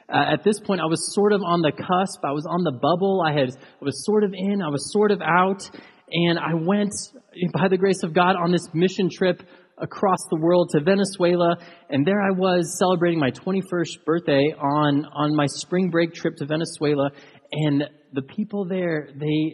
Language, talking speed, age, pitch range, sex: English, 205 wpm, 30-49, 135-180 Hz, male